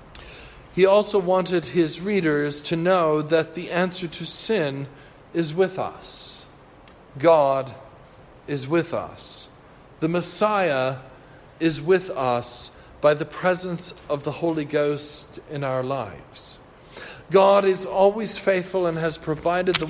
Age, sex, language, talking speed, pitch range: 50-69, male, English, 125 wpm, 140-185 Hz